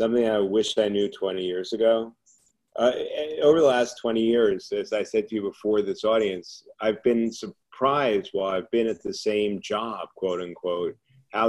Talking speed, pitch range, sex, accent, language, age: 185 wpm, 95-115 Hz, male, American, English, 30-49